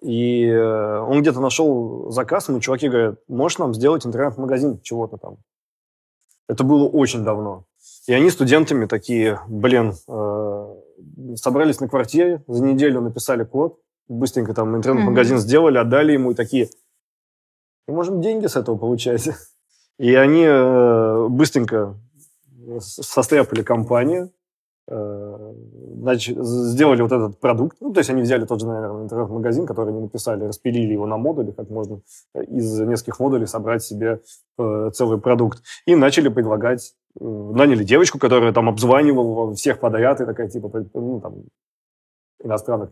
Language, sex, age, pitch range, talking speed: Russian, male, 20-39, 110-130 Hz, 135 wpm